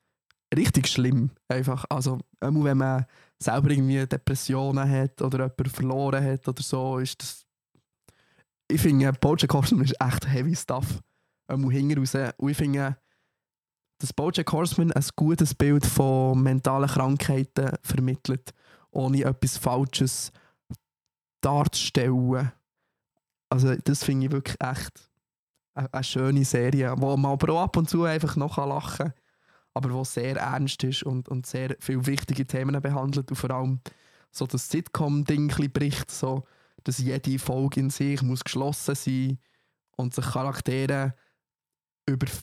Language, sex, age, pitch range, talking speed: German, male, 20-39, 130-140 Hz, 135 wpm